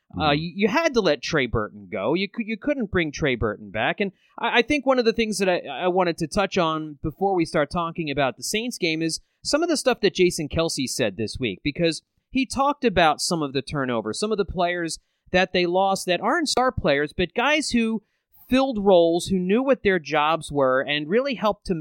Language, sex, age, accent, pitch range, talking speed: English, male, 30-49, American, 165-245 Hz, 230 wpm